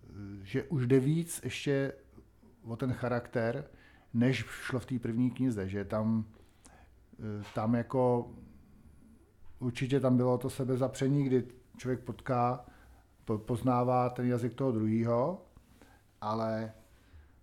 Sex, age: male, 50-69